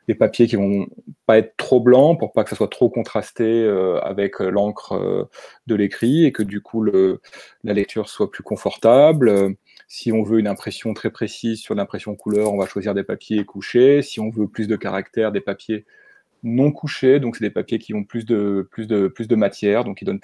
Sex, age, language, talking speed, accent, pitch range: male, 30-49, French, 215 wpm, French, 100-120 Hz